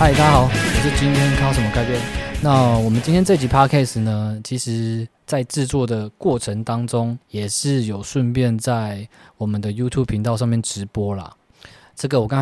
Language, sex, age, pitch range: Chinese, male, 20-39, 110-130 Hz